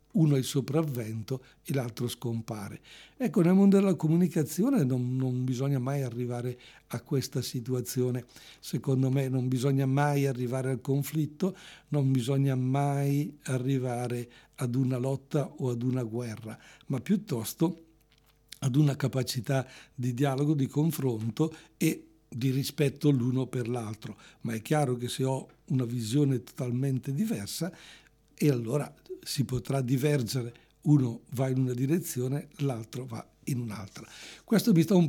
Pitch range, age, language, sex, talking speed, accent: 125-145 Hz, 60-79, English, male, 140 wpm, Italian